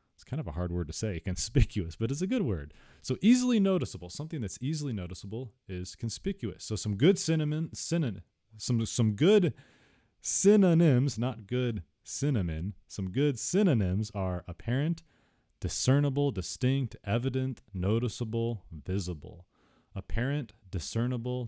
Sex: male